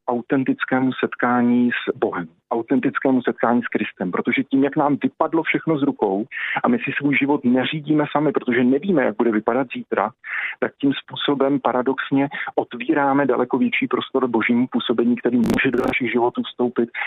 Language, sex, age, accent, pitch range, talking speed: Czech, male, 40-59, native, 120-140 Hz, 160 wpm